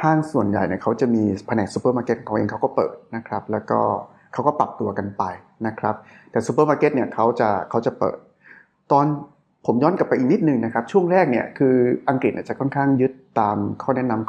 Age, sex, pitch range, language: 20-39, male, 105-130 Hz, Thai